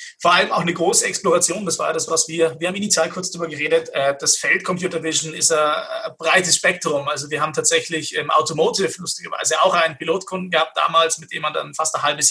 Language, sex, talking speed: German, male, 215 wpm